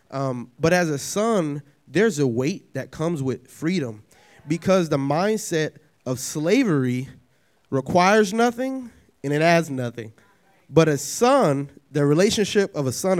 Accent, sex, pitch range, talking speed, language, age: American, male, 135-180 Hz, 140 wpm, English, 20-39